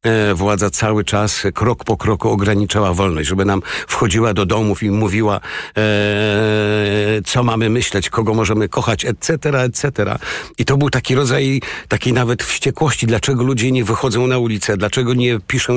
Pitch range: 105-125 Hz